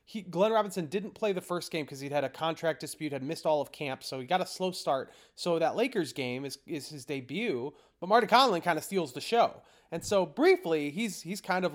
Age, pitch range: 30-49, 140-195 Hz